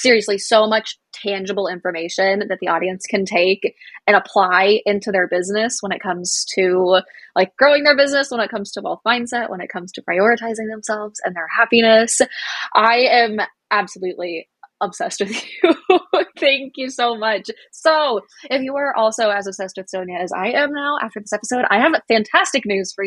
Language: English